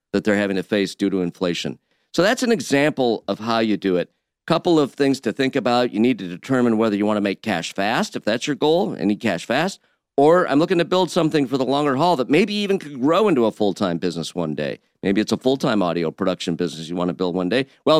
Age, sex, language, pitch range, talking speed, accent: 50-69, male, English, 100-140 Hz, 245 wpm, American